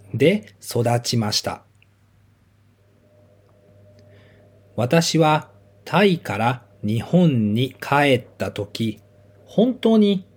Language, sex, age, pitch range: Japanese, male, 40-59, 100-140 Hz